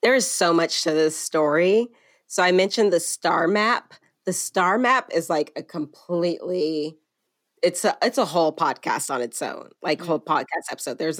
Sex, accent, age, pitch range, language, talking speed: female, American, 30-49, 155-190 Hz, English, 180 wpm